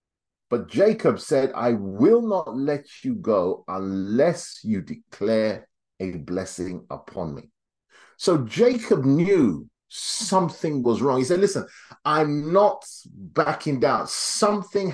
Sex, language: male, English